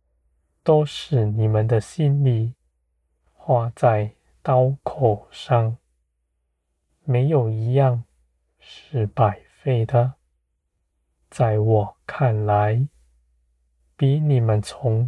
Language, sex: Chinese, male